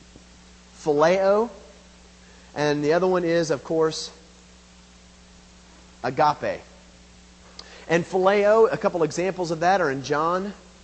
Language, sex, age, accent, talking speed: English, male, 40-59, American, 105 wpm